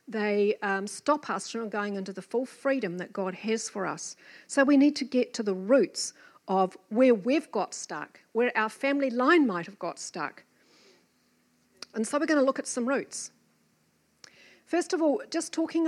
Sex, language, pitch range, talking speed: female, English, 200-275 Hz, 190 wpm